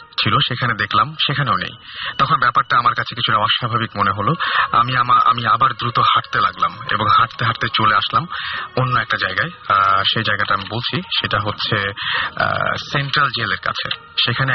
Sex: male